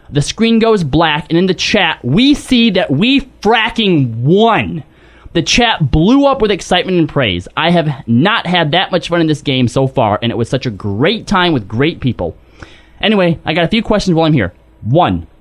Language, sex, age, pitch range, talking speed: English, male, 20-39, 140-210 Hz, 210 wpm